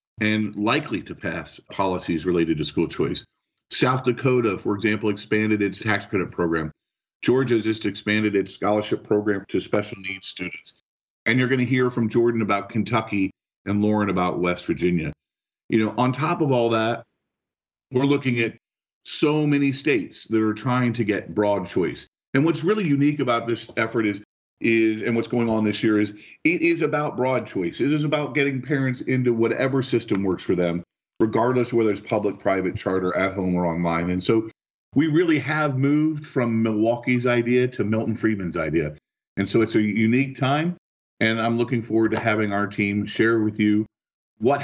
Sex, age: male, 40-59